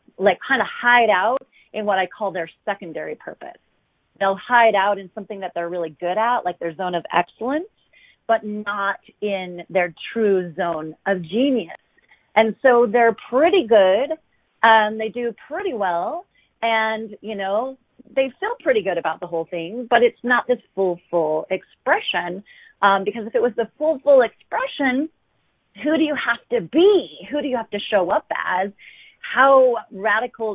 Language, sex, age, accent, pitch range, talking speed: English, female, 30-49, American, 190-245 Hz, 170 wpm